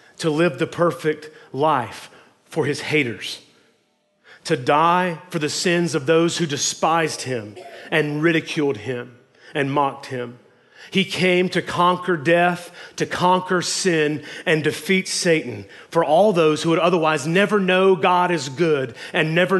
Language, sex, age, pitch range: English, male, 30-49, 135-170 Hz